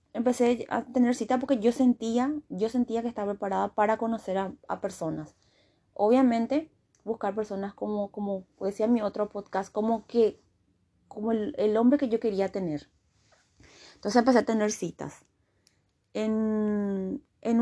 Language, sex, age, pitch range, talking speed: Spanish, female, 20-39, 200-240 Hz, 150 wpm